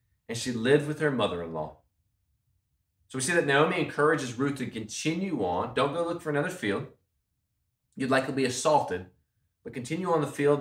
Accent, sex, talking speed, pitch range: American, male, 175 wpm, 110-150 Hz